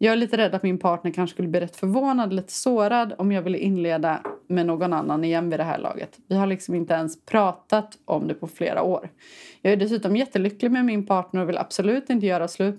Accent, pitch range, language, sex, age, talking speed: native, 175-210 Hz, Swedish, female, 30-49, 235 wpm